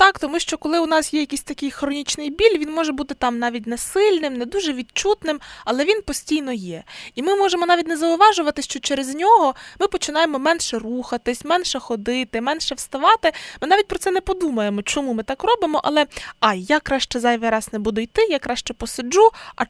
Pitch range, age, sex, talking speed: 230-300 Hz, 20-39, female, 200 wpm